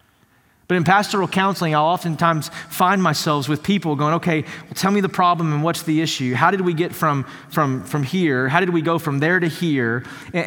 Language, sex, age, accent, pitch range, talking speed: English, male, 30-49, American, 150-195 Hz, 220 wpm